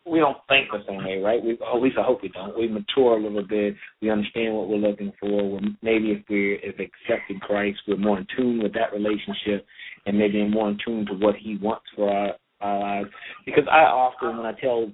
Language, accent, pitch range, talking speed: English, American, 100-110 Hz, 220 wpm